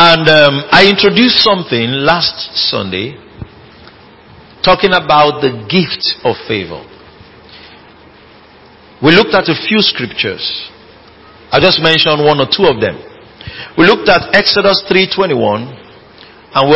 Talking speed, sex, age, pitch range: 120 wpm, male, 50-69, 155-205 Hz